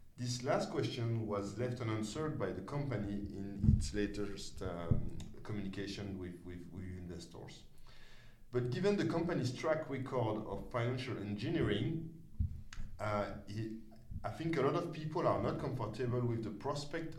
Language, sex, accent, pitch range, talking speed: English, male, French, 105-145 Hz, 140 wpm